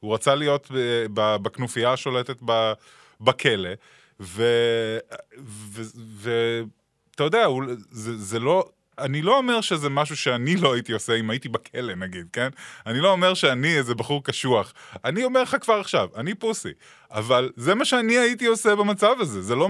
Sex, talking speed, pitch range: male, 160 wpm, 115-160 Hz